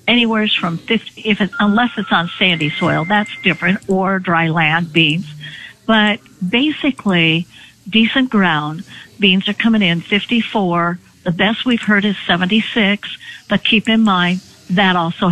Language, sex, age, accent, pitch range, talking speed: English, female, 60-79, American, 180-215 Hz, 135 wpm